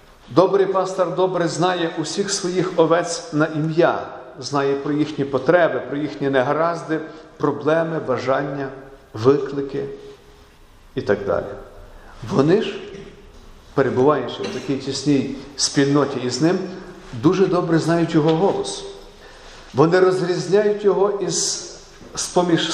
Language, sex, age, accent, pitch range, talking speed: Ukrainian, male, 50-69, native, 135-180 Hz, 110 wpm